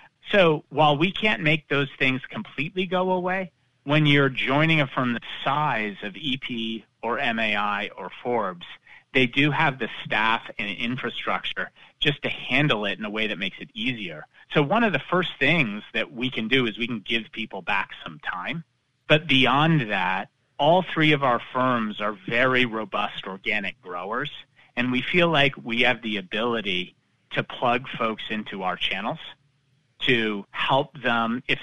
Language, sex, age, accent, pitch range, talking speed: English, male, 30-49, American, 115-145 Hz, 170 wpm